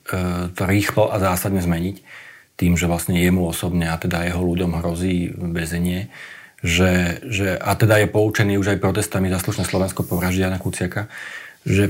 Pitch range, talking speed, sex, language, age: 95-115 Hz, 160 wpm, male, Slovak, 40-59